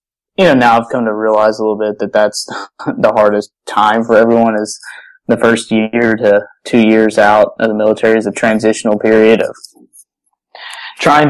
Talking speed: 180 wpm